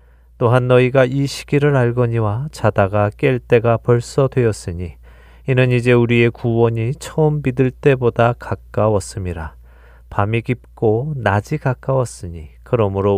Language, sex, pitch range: Korean, male, 90-125 Hz